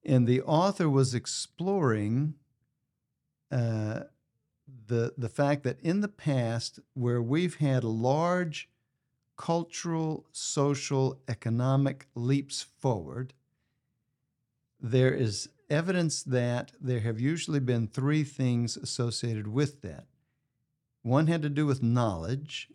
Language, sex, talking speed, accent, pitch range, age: English, male, 110 wpm, American, 120-145 Hz, 60-79